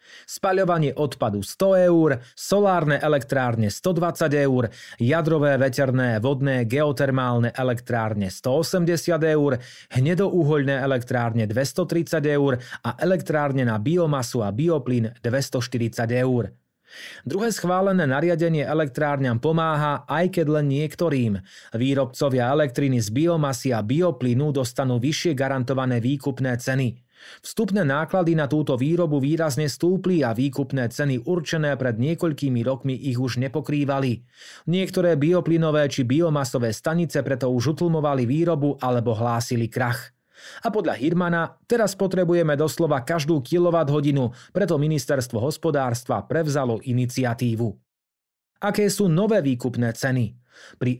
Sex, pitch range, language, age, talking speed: male, 125-165 Hz, Slovak, 30-49, 110 wpm